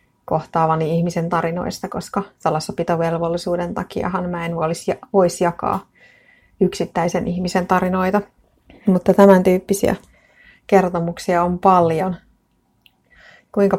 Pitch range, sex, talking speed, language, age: 170-185 Hz, female, 85 wpm, Finnish, 30-49